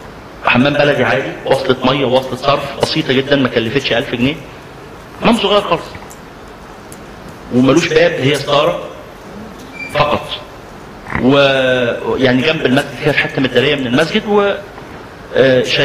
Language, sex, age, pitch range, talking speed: Arabic, male, 40-59, 130-210 Hz, 125 wpm